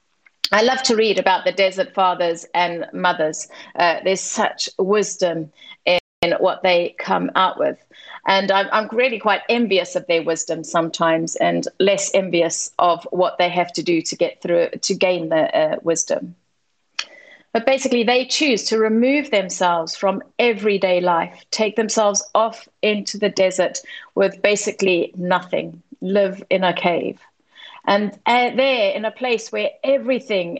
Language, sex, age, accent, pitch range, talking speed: English, female, 40-59, British, 185-230 Hz, 150 wpm